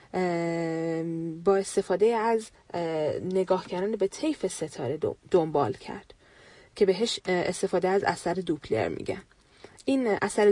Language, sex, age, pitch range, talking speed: Persian, female, 30-49, 180-230 Hz, 110 wpm